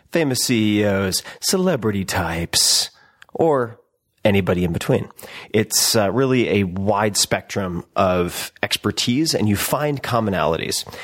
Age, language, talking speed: 30-49, English, 110 wpm